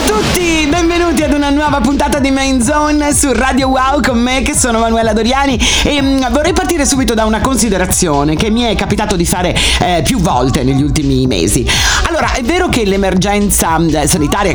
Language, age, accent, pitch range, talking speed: Italian, 40-59, native, 150-230 Hz, 185 wpm